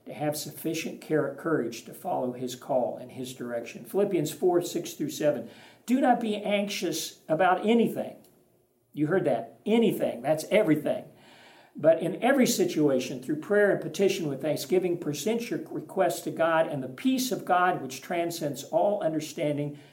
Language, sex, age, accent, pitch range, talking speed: English, male, 50-69, American, 135-190 Hz, 160 wpm